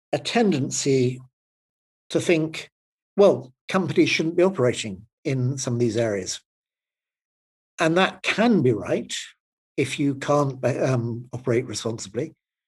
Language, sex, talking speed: English, male, 120 wpm